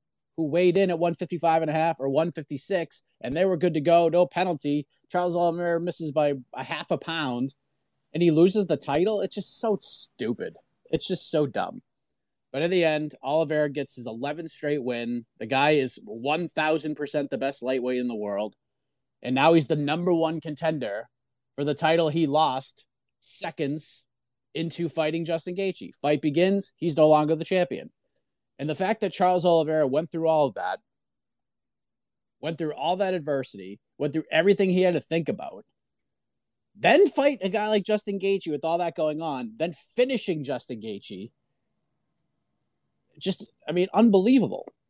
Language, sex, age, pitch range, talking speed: English, male, 30-49, 140-175 Hz, 170 wpm